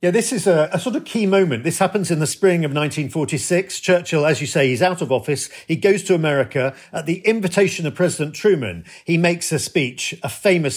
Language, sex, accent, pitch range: English, male, British, 145-190 Hz